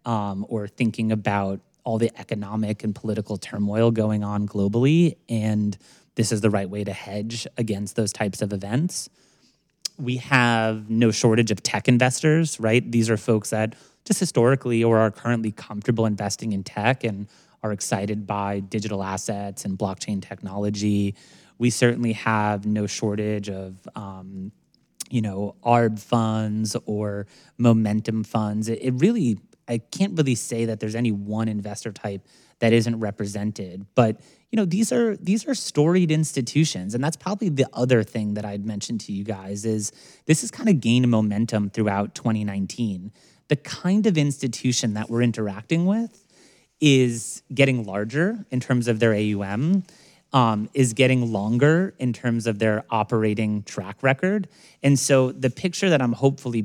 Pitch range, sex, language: 105-130 Hz, male, English